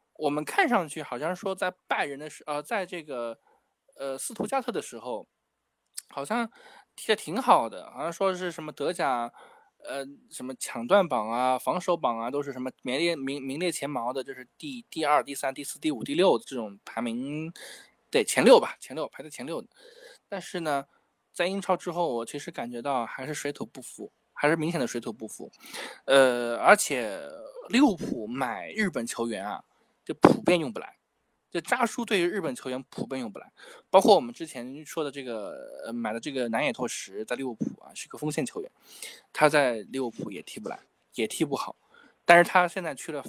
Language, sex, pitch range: Chinese, male, 130-190 Hz